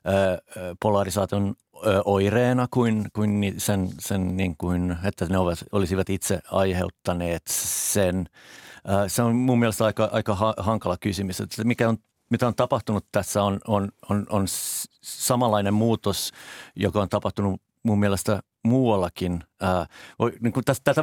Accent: native